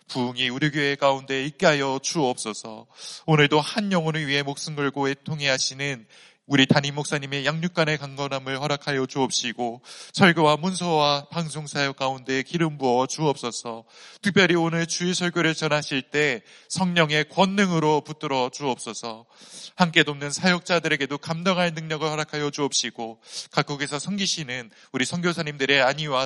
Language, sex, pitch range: Korean, male, 140-175 Hz